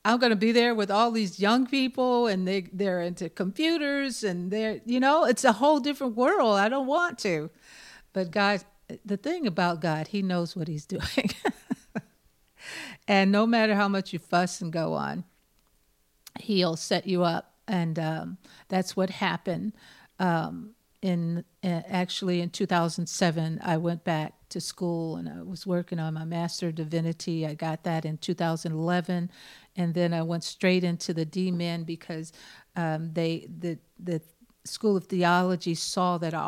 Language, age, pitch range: English, 50-69, 165-195 Hz